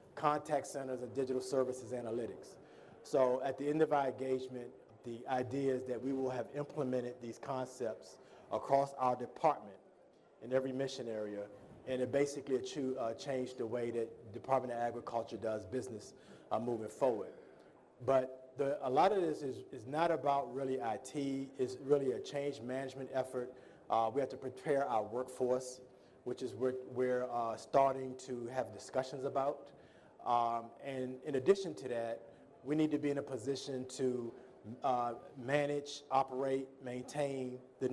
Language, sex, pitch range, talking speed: English, male, 125-140 Hz, 160 wpm